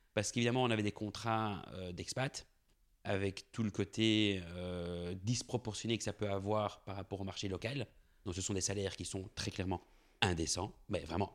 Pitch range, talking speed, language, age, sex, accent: 100-125 Hz, 180 wpm, French, 30-49, male, French